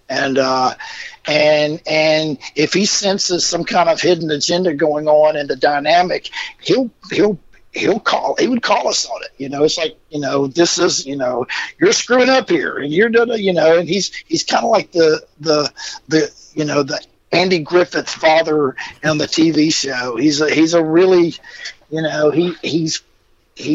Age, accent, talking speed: 50-69, American, 185 wpm